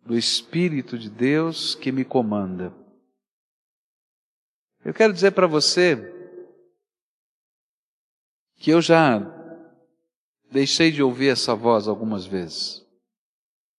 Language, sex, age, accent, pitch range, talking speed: English, male, 50-69, Brazilian, 115-155 Hz, 95 wpm